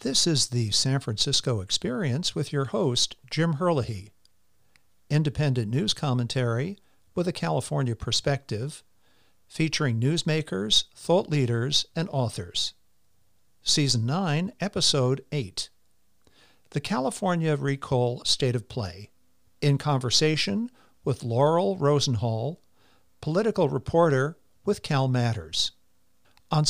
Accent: American